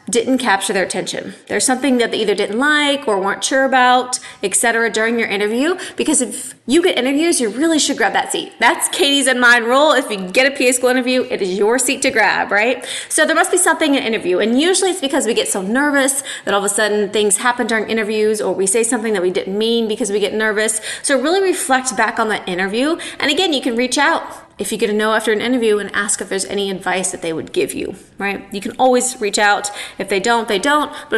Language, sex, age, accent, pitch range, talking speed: English, female, 20-39, American, 220-280 Hz, 250 wpm